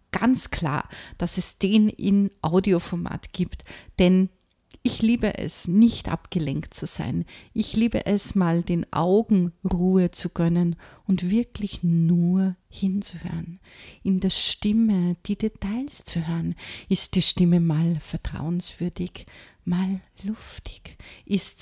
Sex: female